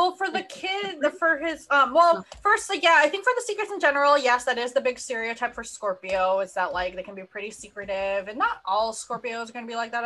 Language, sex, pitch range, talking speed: English, female, 185-275 Hz, 255 wpm